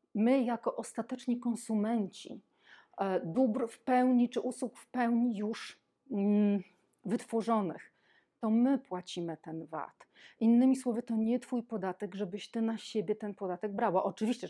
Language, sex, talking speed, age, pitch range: Polish, female, 130 wpm, 40-59, 190-240 Hz